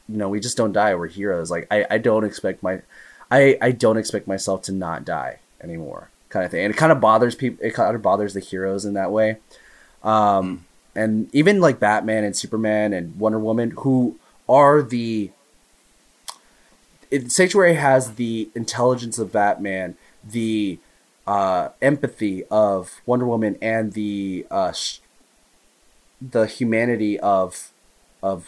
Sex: male